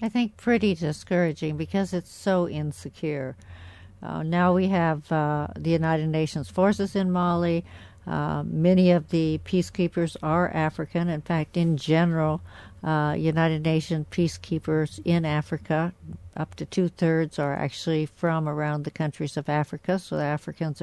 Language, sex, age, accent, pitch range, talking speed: English, female, 60-79, American, 150-170 Hz, 140 wpm